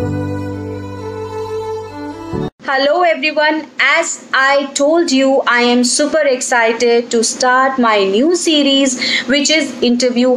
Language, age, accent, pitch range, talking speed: English, 30-49, Indian, 235-290 Hz, 105 wpm